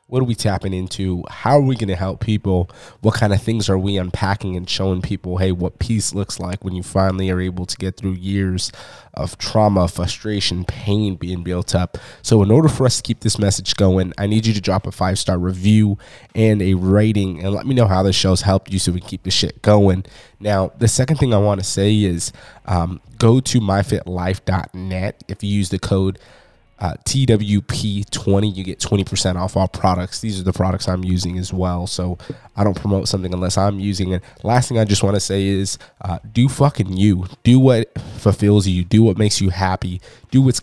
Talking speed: 215 wpm